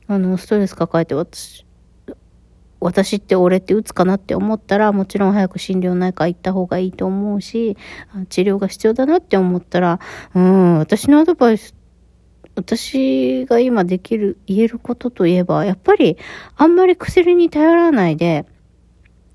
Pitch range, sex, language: 170-220 Hz, female, Japanese